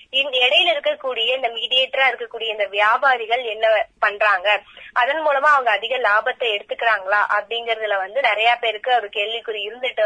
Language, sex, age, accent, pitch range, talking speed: Tamil, female, 20-39, native, 220-290 Hz, 130 wpm